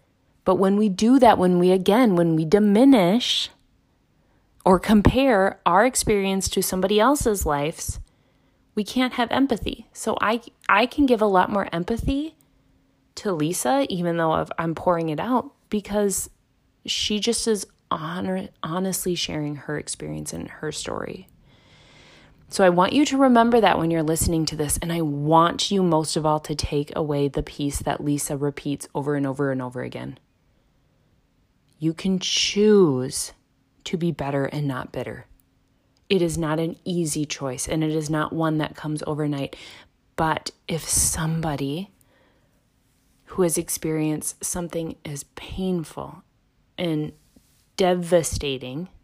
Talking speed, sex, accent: 145 wpm, female, American